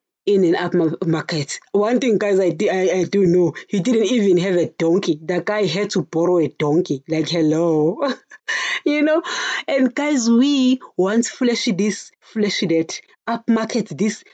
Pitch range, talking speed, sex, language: 175-240 Hz, 160 wpm, female, English